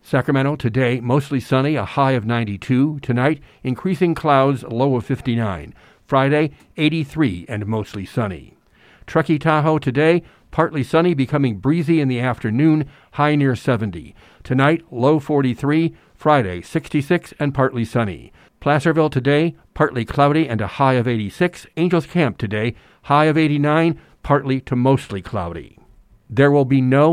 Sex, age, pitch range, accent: male, 50-69, 115-150 Hz, American